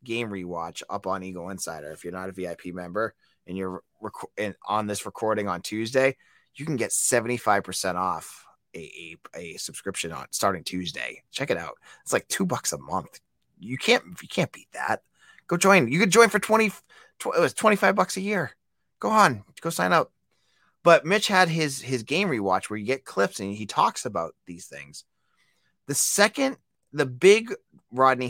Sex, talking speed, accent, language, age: male, 190 wpm, American, English, 30-49